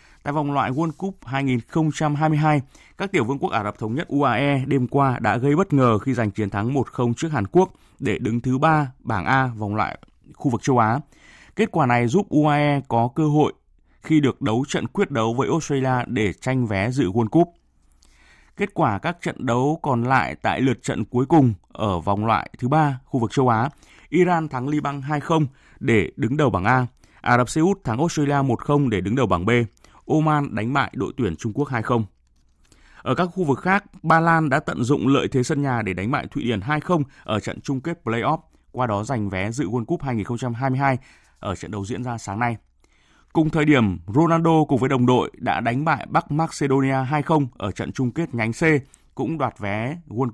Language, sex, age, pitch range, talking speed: Vietnamese, male, 20-39, 115-150 Hz, 210 wpm